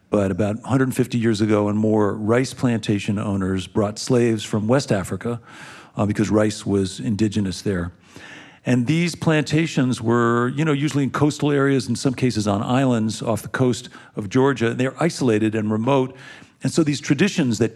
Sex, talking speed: male, 170 wpm